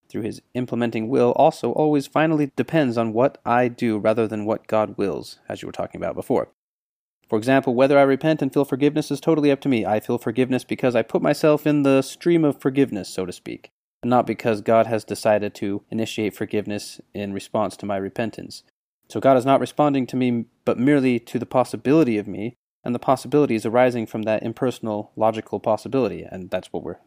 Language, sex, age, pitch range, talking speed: English, male, 30-49, 105-130 Hz, 205 wpm